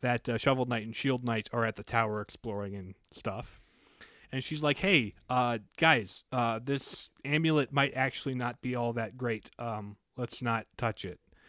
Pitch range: 115-155 Hz